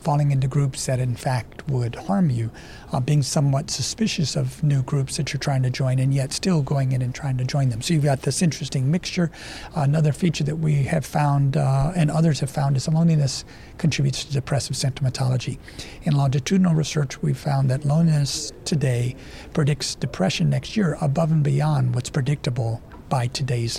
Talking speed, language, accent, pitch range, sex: 185 wpm, English, American, 135-160 Hz, male